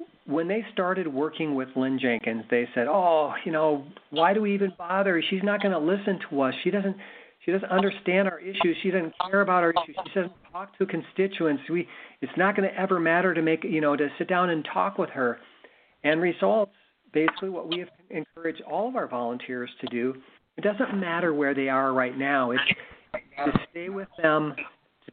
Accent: American